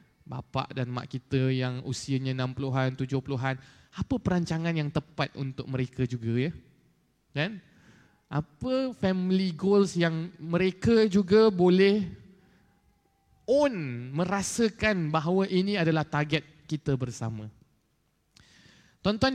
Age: 20-39